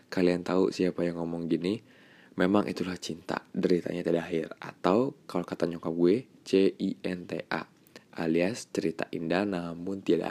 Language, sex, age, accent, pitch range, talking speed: Indonesian, male, 20-39, native, 85-100 Hz, 150 wpm